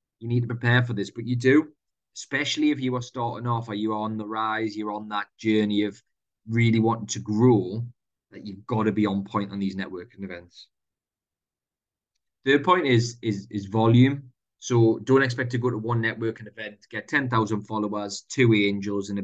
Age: 20-39